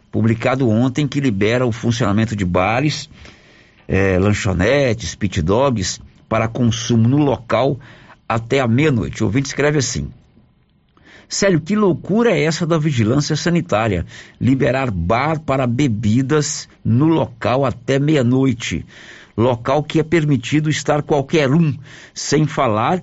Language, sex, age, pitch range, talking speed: Portuguese, male, 60-79, 110-145 Hz, 120 wpm